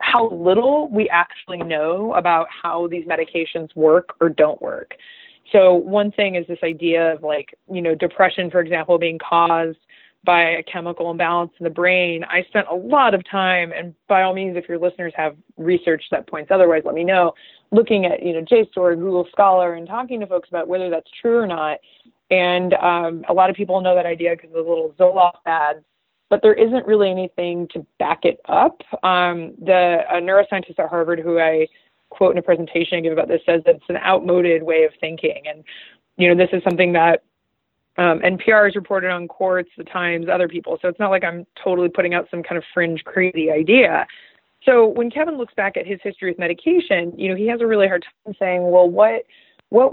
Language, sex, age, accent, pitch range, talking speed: English, female, 20-39, American, 170-195 Hz, 210 wpm